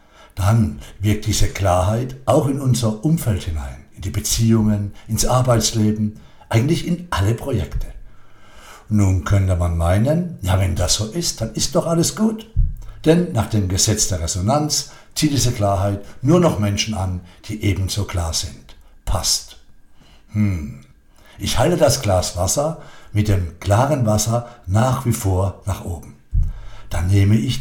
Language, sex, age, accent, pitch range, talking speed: German, male, 60-79, German, 90-125 Hz, 150 wpm